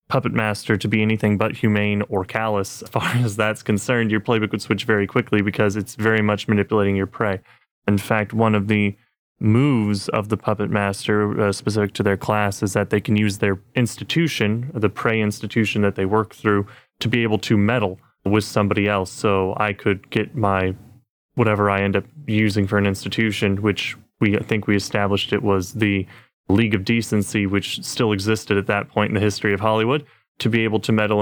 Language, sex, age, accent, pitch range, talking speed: English, male, 20-39, American, 100-115 Hz, 200 wpm